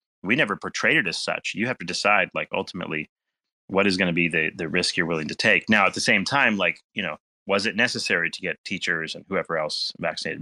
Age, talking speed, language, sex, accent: 30-49, 240 wpm, English, male, American